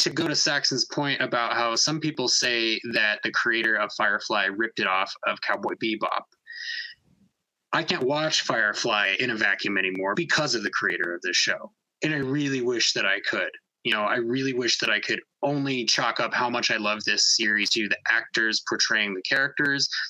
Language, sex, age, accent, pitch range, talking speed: English, male, 20-39, American, 110-150 Hz, 195 wpm